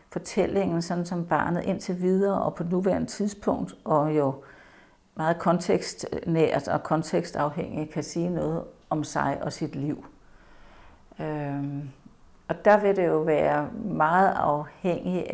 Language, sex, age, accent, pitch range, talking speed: Danish, female, 60-79, native, 155-190 Hz, 130 wpm